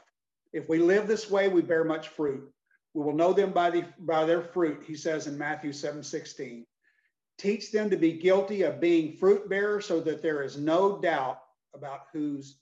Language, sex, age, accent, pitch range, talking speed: English, male, 50-69, American, 155-195 Hz, 195 wpm